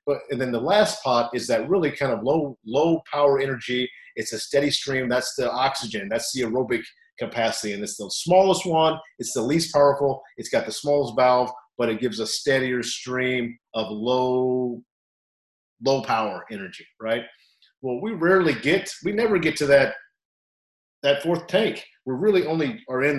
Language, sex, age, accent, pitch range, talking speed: English, male, 40-59, American, 110-145 Hz, 180 wpm